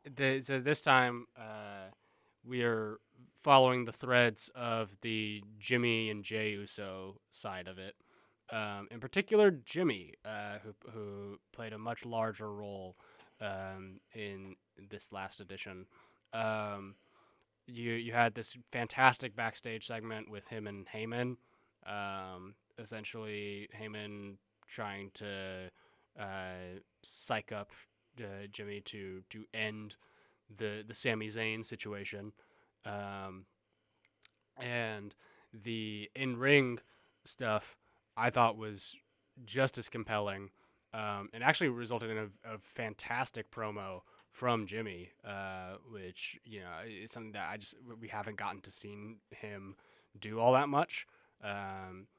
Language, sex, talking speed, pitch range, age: English, male, 125 wpm, 100-120 Hz, 20-39